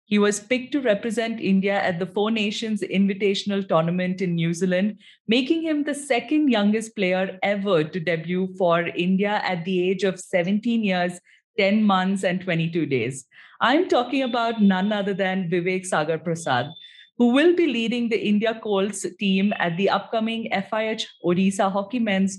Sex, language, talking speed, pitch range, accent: female, English, 165 wpm, 180-220 Hz, Indian